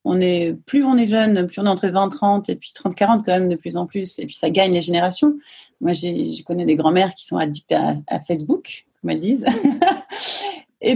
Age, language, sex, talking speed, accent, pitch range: 30-49, French, female, 225 wpm, French, 170-245 Hz